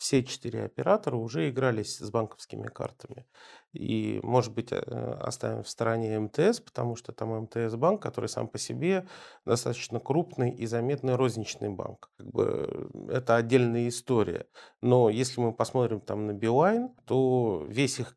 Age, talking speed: 40-59, 145 wpm